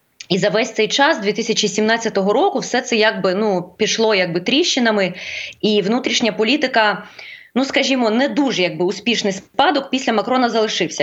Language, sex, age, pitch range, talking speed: Ukrainian, female, 20-39, 200-260 Hz, 145 wpm